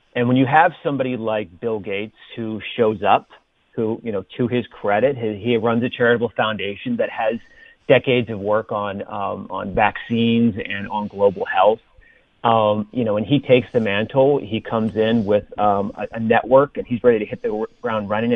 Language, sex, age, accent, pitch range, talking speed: English, male, 40-59, American, 115-145 Hz, 195 wpm